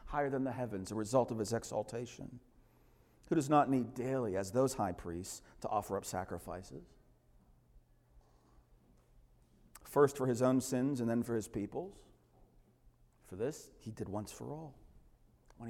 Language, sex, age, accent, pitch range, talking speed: English, male, 40-59, American, 115-160 Hz, 155 wpm